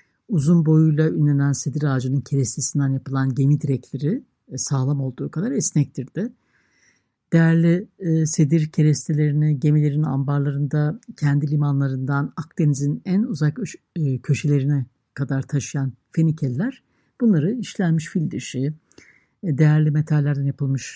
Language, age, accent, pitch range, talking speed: Turkish, 60-79, native, 145-185 Hz, 95 wpm